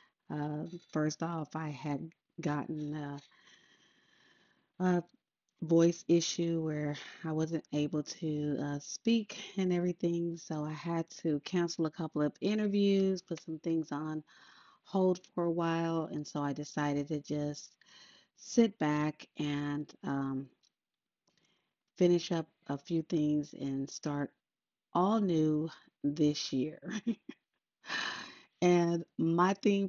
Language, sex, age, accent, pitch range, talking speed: English, female, 30-49, American, 150-180 Hz, 120 wpm